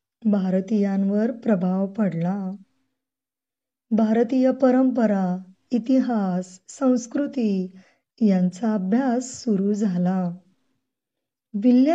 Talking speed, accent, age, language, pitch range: 50 wpm, native, 20-39, Marathi, 200-255 Hz